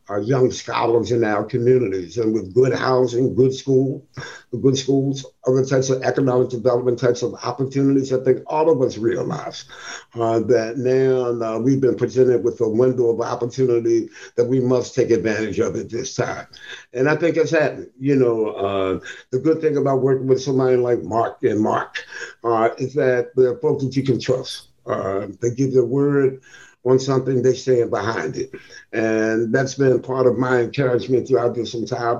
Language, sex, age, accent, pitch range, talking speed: English, male, 60-79, American, 115-130 Hz, 185 wpm